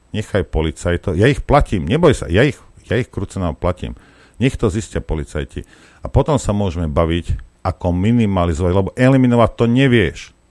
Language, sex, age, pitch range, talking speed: Slovak, male, 50-69, 80-110 Hz, 160 wpm